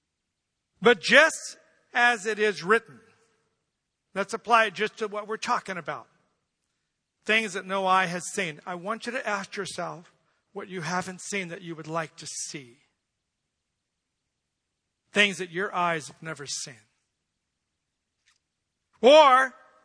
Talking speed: 135 wpm